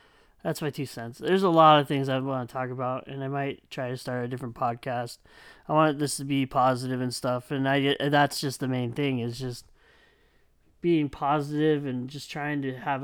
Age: 20-39